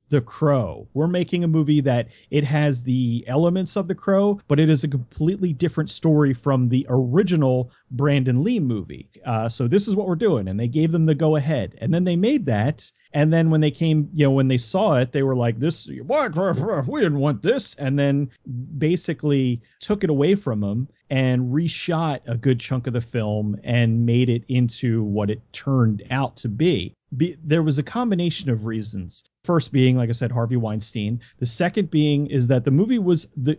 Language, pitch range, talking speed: English, 120-160 Hz, 200 wpm